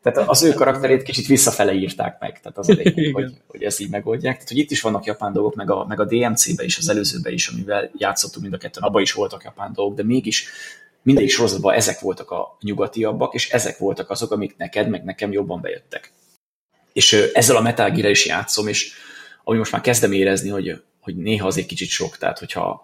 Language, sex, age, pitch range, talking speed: Hungarian, male, 30-49, 95-130 Hz, 215 wpm